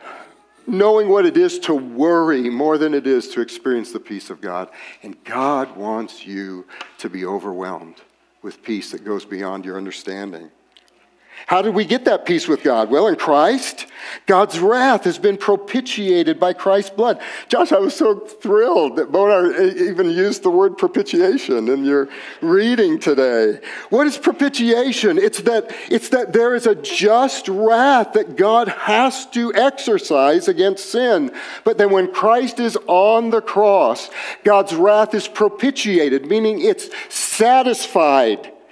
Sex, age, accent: male, 50-69, American